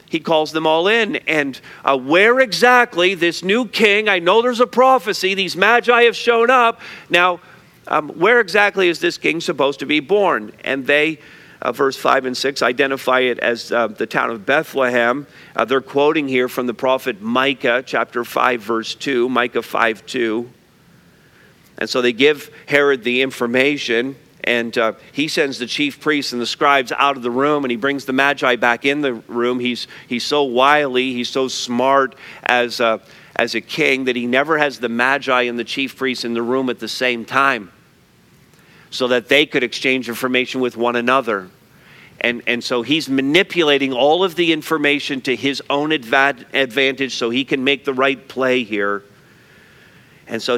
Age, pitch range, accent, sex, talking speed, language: 50-69, 125-155 Hz, American, male, 185 wpm, English